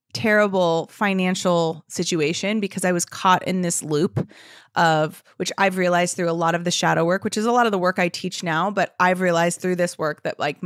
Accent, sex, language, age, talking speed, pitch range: American, female, English, 20-39, 220 wpm, 170-205 Hz